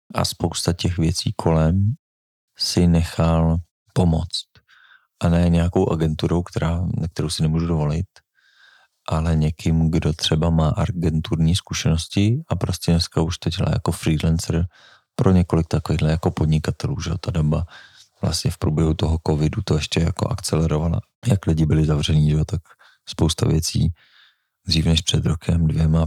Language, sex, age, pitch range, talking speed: Czech, male, 40-59, 80-95 Hz, 145 wpm